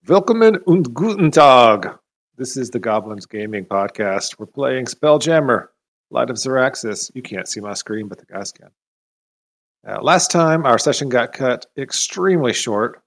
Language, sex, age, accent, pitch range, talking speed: English, male, 40-59, American, 110-140 Hz, 155 wpm